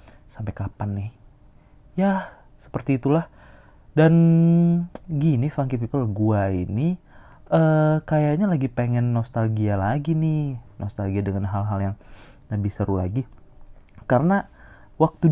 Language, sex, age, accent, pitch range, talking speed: Indonesian, male, 20-39, native, 100-145 Hz, 110 wpm